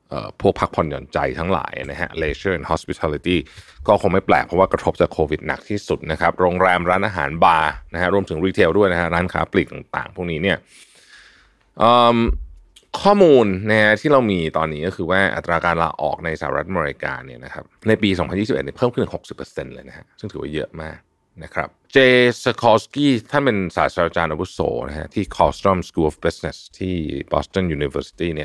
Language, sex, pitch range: Thai, male, 80-110 Hz